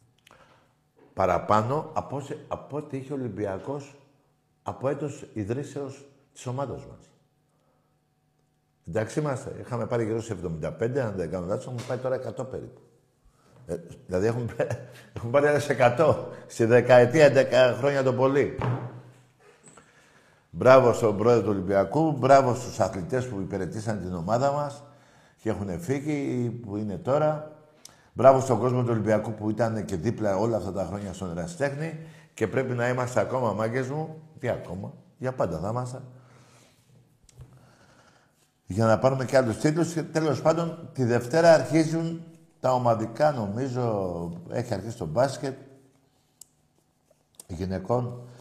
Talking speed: 130 wpm